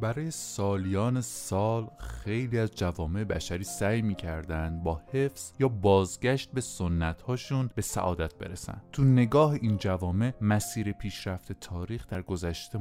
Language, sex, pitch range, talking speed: Persian, male, 90-125 Hz, 130 wpm